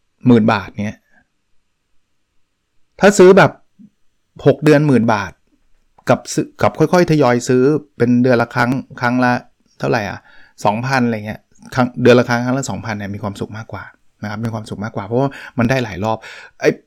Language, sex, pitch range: Thai, male, 110-140 Hz